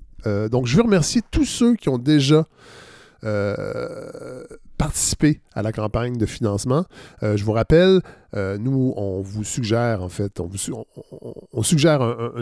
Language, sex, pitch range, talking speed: French, male, 110-155 Hz, 175 wpm